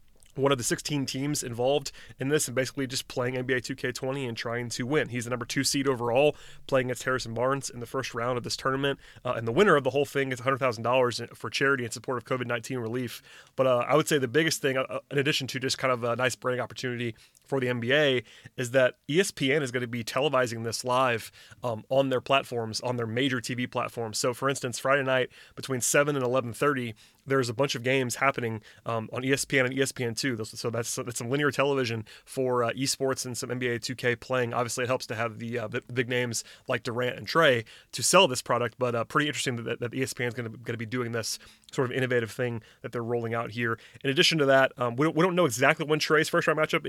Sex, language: male, English